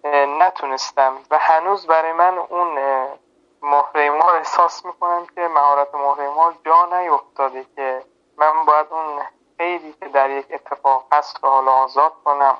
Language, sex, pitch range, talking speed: Persian, male, 145-175 Hz, 145 wpm